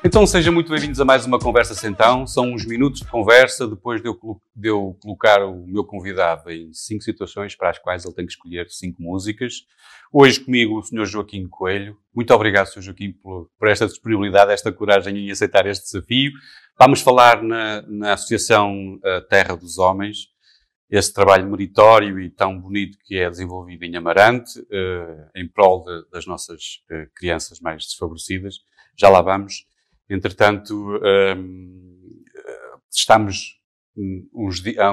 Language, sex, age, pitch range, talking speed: Portuguese, male, 30-49, 90-110 Hz, 155 wpm